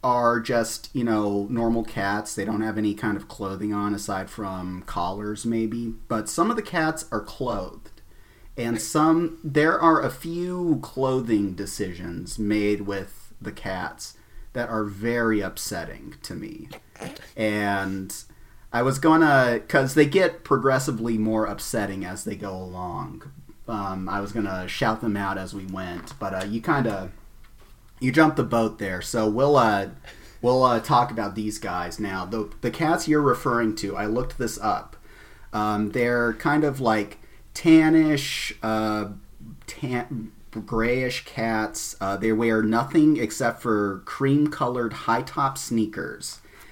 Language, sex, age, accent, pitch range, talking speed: English, male, 30-49, American, 105-125 Hz, 150 wpm